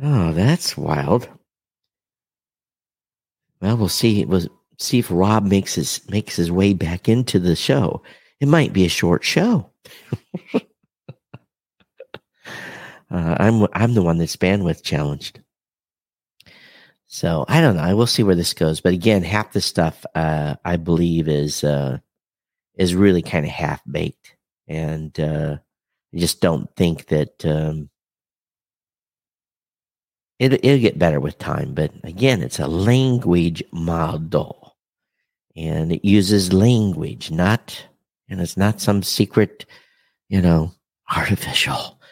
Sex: male